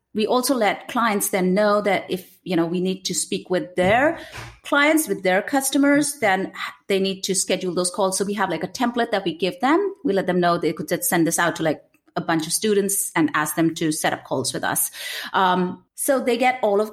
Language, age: English, 30-49